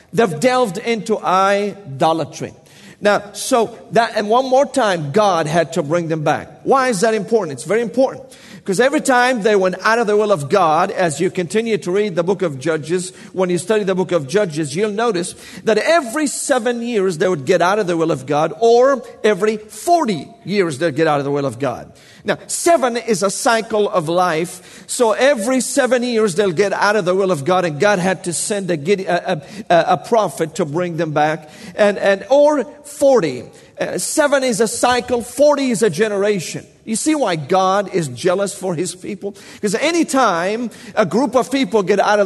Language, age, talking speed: English, 40-59, 200 wpm